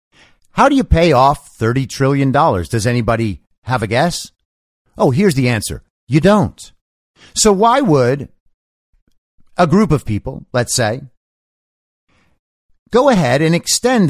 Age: 50-69